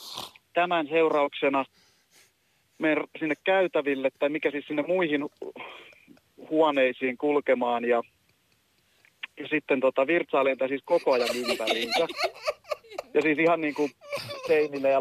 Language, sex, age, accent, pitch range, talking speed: Finnish, male, 40-59, native, 145-185 Hz, 105 wpm